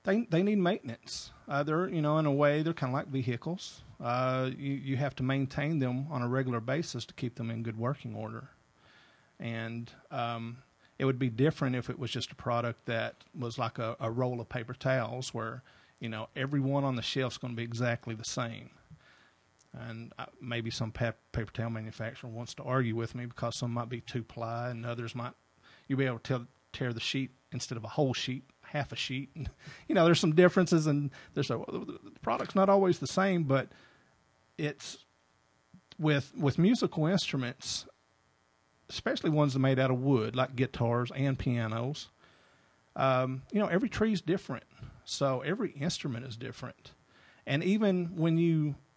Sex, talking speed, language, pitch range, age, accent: male, 190 wpm, English, 120-150 Hz, 40-59, American